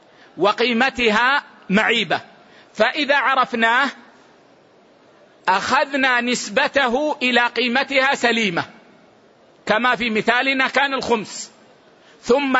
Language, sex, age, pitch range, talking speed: Arabic, male, 50-69, 225-265 Hz, 70 wpm